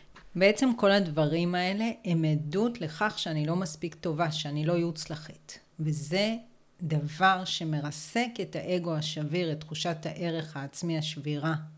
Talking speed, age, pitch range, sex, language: 125 wpm, 40-59, 155-195 Hz, female, Hebrew